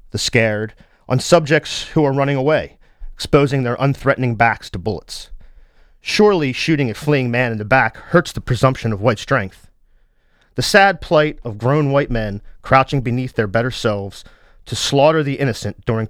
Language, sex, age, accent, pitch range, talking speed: English, male, 40-59, American, 110-140 Hz, 170 wpm